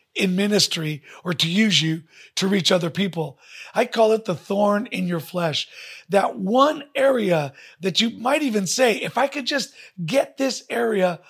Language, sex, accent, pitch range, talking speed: English, male, American, 170-225 Hz, 175 wpm